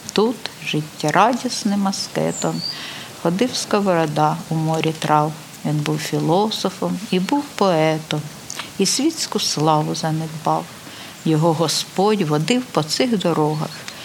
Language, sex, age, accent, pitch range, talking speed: Ukrainian, female, 50-69, native, 155-195 Hz, 105 wpm